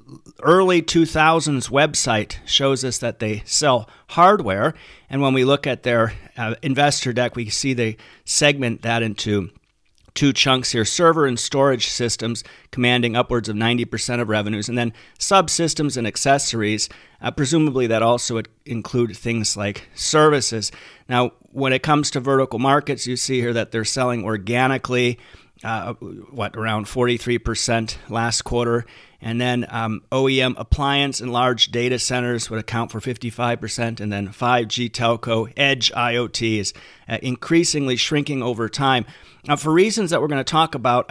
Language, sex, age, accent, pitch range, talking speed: English, male, 40-59, American, 115-140 Hz, 150 wpm